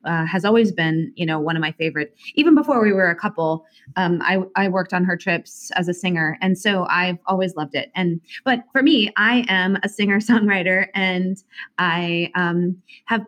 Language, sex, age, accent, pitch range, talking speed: English, female, 30-49, American, 175-225 Hz, 205 wpm